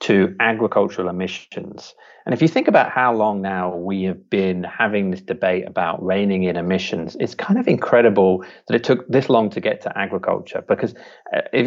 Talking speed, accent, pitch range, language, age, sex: 185 wpm, British, 90-120 Hz, English, 40-59, male